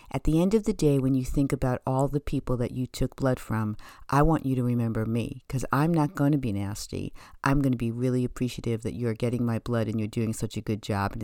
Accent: American